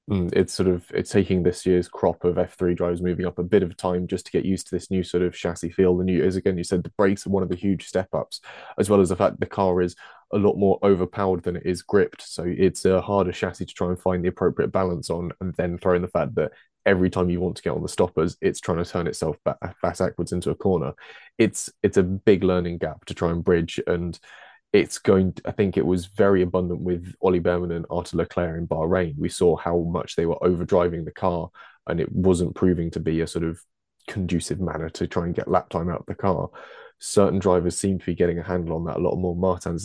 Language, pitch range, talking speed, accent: English, 85-95 Hz, 255 wpm, British